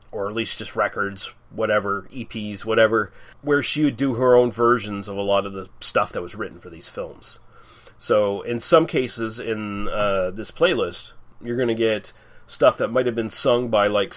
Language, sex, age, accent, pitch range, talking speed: English, male, 30-49, American, 110-135 Hz, 200 wpm